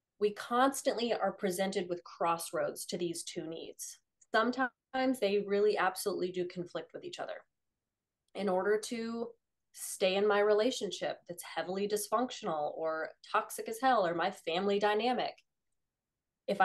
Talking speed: 135 wpm